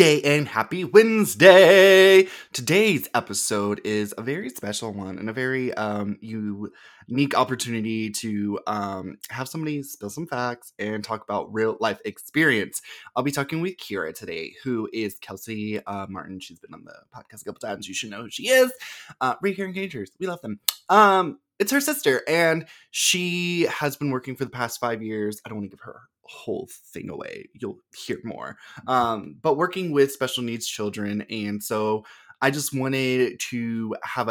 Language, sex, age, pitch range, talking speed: English, male, 20-39, 105-145 Hz, 175 wpm